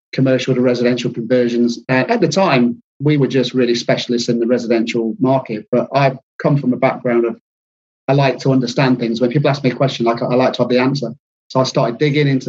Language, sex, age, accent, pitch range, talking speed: Swedish, male, 30-49, British, 120-140 Hz, 230 wpm